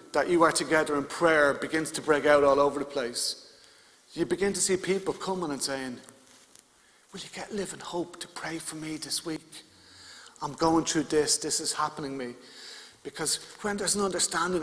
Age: 40-59